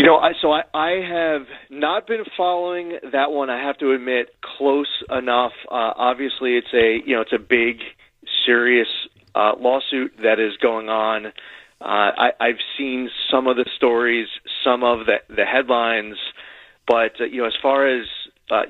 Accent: American